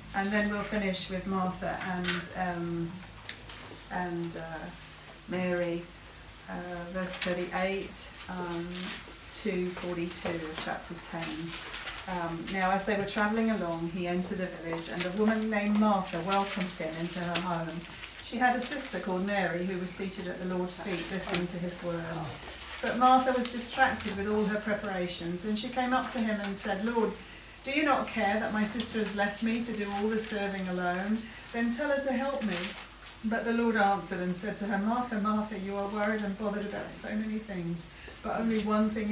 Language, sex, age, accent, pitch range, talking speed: English, female, 40-59, British, 180-215 Hz, 185 wpm